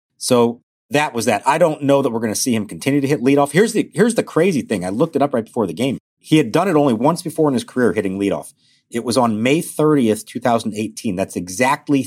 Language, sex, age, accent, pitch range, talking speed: English, male, 50-69, American, 105-145 Hz, 255 wpm